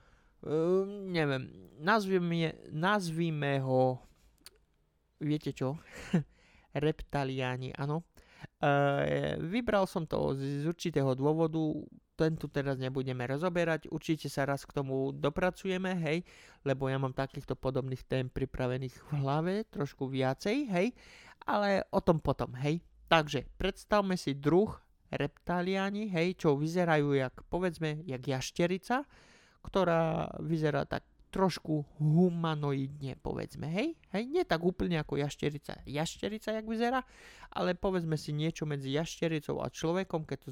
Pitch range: 135-175 Hz